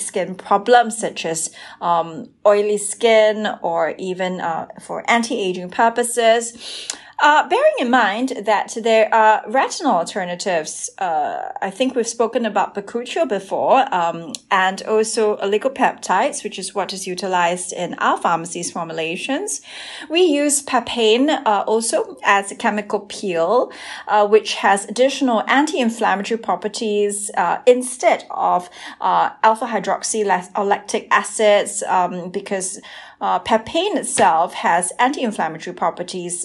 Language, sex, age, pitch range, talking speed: English, female, 30-49, 195-255 Hz, 120 wpm